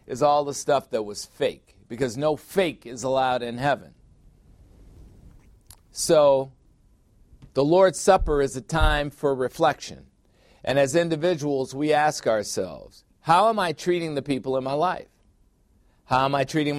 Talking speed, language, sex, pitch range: 150 wpm, English, male, 120-145 Hz